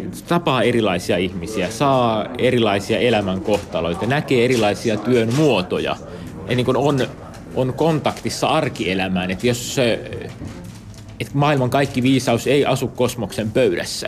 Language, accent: Finnish, native